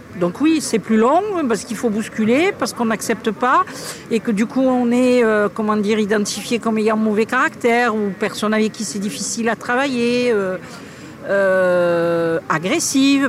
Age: 50-69